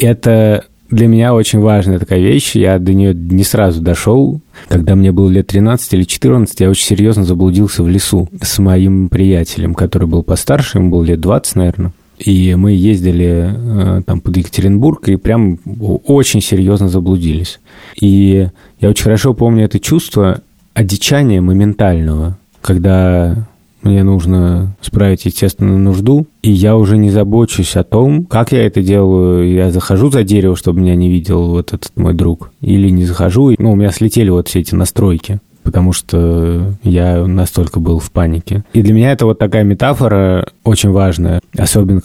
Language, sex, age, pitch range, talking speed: Russian, male, 30-49, 90-110 Hz, 165 wpm